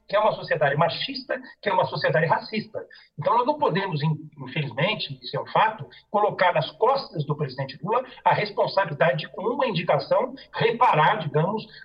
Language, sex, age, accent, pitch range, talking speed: English, male, 60-79, Brazilian, 150-220 Hz, 165 wpm